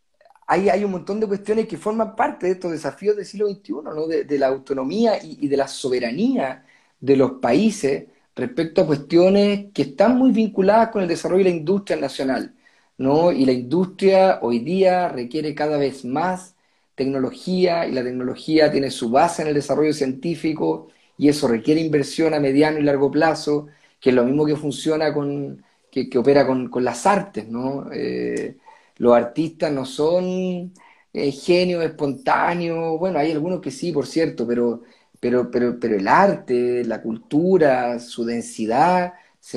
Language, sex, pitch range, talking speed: Spanish, male, 130-175 Hz, 170 wpm